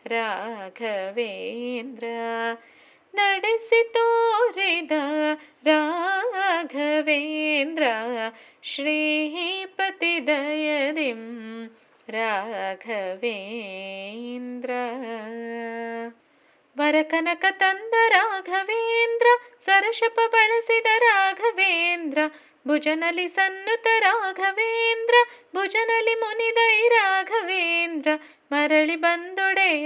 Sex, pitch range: female, 240-405 Hz